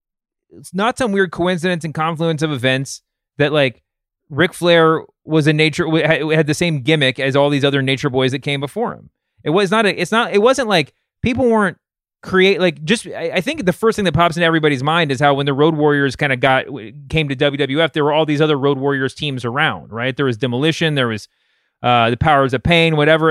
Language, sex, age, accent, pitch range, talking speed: English, male, 30-49, American, 140-190 Hz, 225 wpm